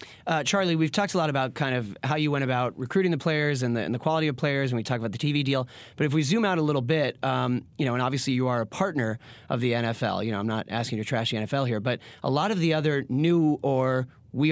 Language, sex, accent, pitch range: English, male, American, 125-155 Hz